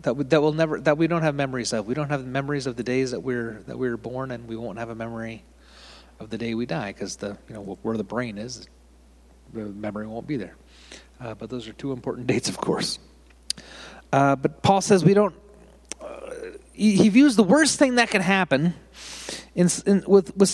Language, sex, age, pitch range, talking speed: English, male, 30-49, 100-155 Hz, 220 wpm